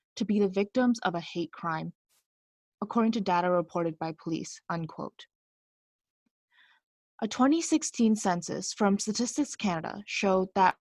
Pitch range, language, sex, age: 165-215 Hz, English, female, 20-39